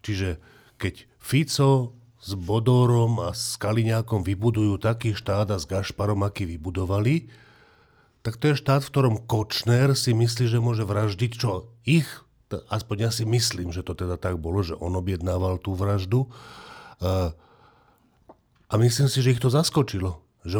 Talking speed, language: 150 wpm, Slovak